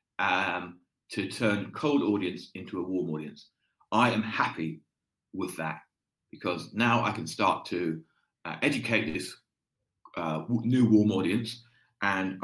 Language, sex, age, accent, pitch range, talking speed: English, male, 40-59, British, 95-120 Hz, 135 wpm